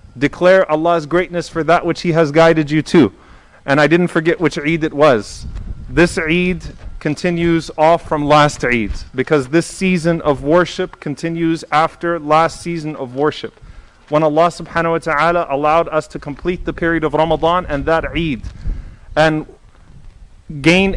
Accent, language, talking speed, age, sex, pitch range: American, English, 155 wpm, 30-49, male, 155-185 Hz